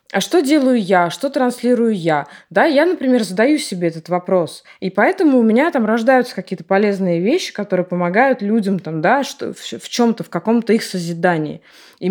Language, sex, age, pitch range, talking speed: Russian, female, 20-39, 185-255 Hz, 180 wpm